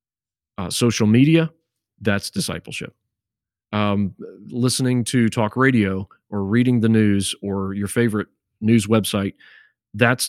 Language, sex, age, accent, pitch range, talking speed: English, male, 40-59, American, 100-125 Hz, 115 wpm